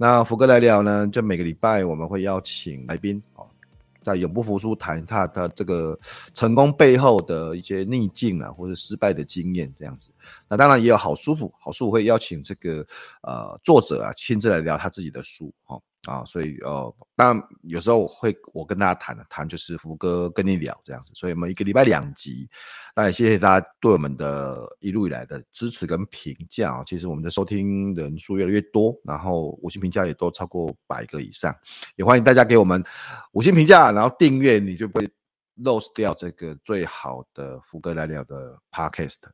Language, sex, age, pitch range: Chinese, male, 30-49, 80-110 Hz